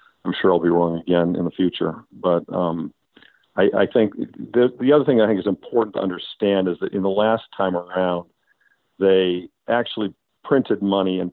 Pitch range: 90-105 Hz